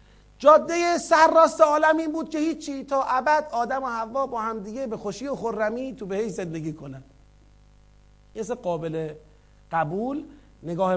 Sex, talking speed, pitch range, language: male, 150 wpm, 240-295 Hz, Persian